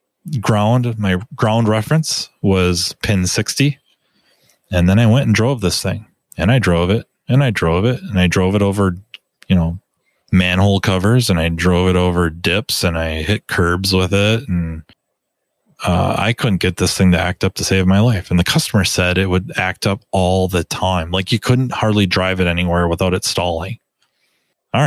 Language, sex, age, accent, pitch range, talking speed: English, male, 20-39, American, 90-115 Hz, 195 wpm